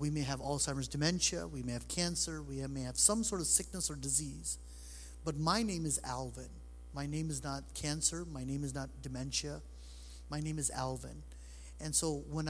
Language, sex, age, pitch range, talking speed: English, male, 30-49, 125-160 Hz, 190 wpm